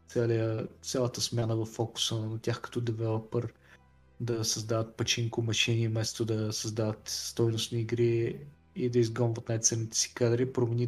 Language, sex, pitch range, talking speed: Bulgarian, male, 115-130 Hz, 140 wpm